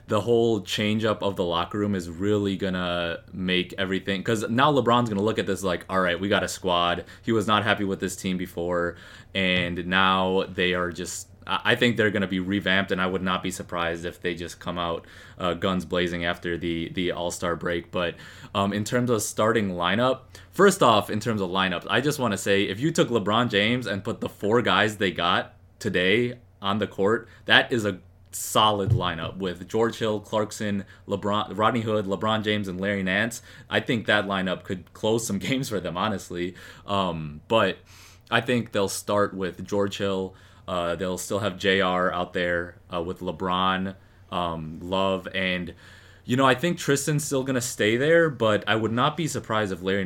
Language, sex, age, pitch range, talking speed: English, male, 20-39, 90-105 Hz, 200 wpm